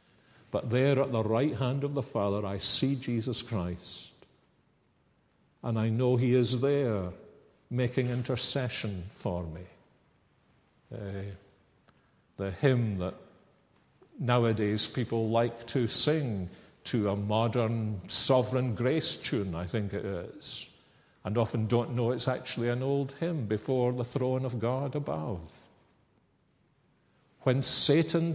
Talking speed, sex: 125 wpm, male